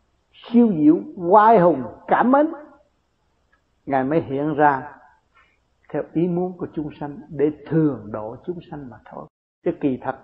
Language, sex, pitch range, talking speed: Vietnamese, male, 130-175 Hz, 150 wpm